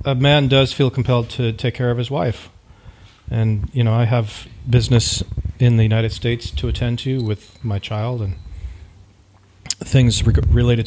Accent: American